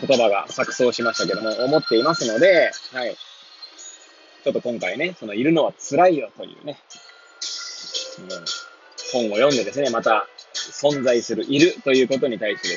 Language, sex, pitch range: Japanese, male, 130-200 Hz